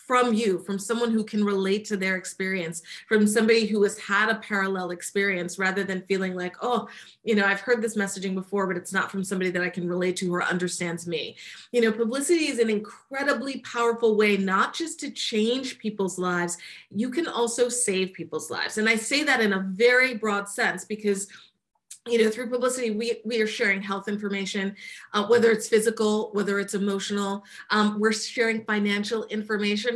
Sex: female